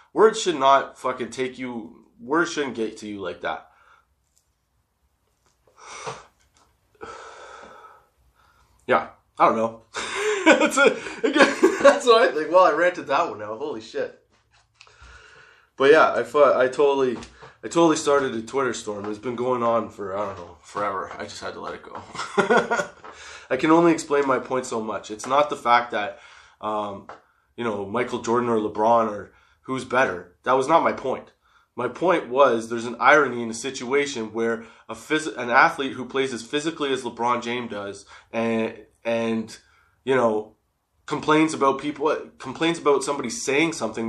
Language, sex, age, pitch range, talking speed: English, male, 20-39, 115-170 Hz, 160 wpm